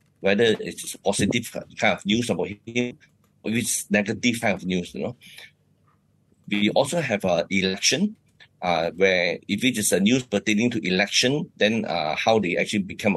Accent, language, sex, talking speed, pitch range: Malaysian, English, male, 180 wpm, 100-125 Hz